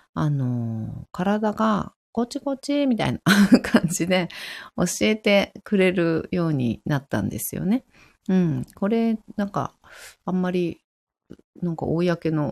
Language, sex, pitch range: Japanese, female, 130-200 Hz